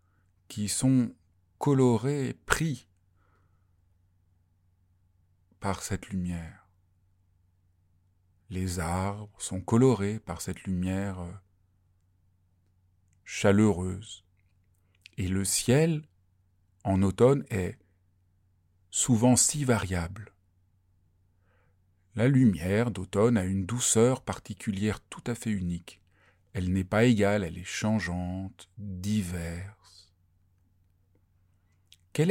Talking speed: 80 wpm